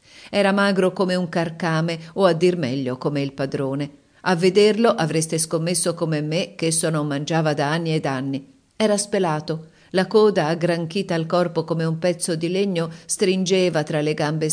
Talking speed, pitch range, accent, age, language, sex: 180 wpm, 150-185 Hz, native, 40-59, Italian, female